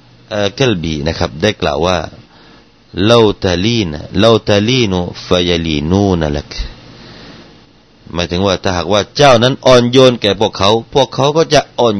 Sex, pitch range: male, 85-115 Hz